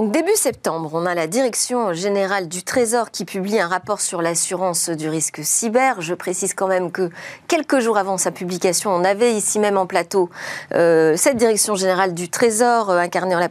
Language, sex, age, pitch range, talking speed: French, female, 40-59, 180-245 Hz, 200 wpm